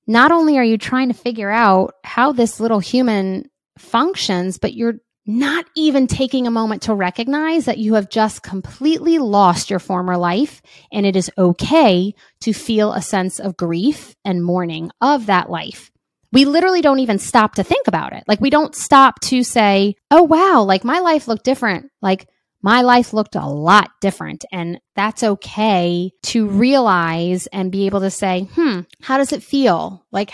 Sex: female